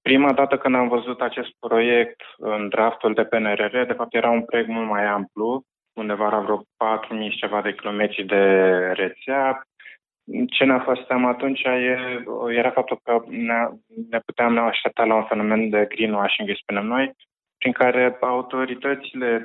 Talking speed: 155 wpm